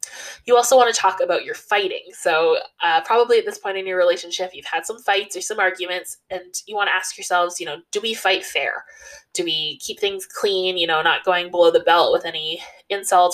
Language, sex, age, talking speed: English, female, 20-39, 230 wpm